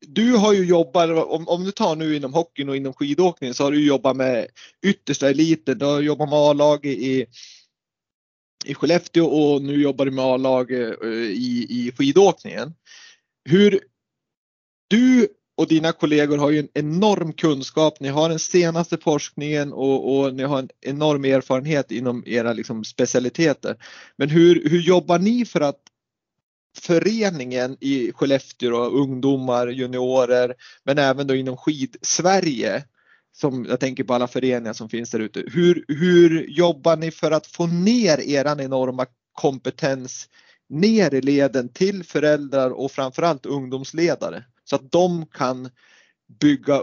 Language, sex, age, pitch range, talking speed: Swedish, male, 30-49, 130-170 Hz, 145 wpm